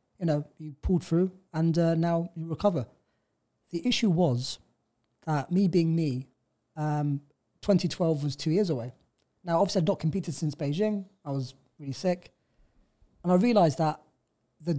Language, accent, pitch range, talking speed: English, British, 150-180 Hz, 160 wpm